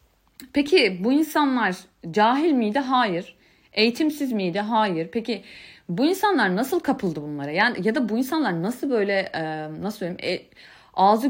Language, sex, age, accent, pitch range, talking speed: Turkish, female, 30-49, native, 185-270 Hz, 125 wpm